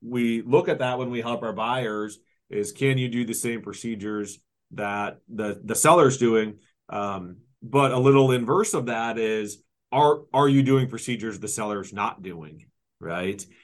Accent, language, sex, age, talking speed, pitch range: American, English, male, 30-49, 170 wpm, 105-125 Hz